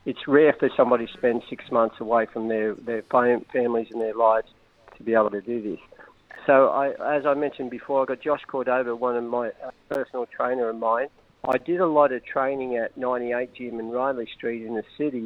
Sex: male